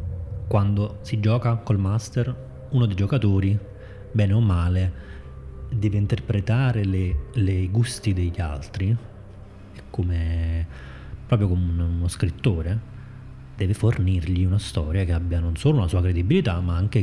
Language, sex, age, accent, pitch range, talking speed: Italian, male, 20-39, native, 90-110 Hz, 125 wpm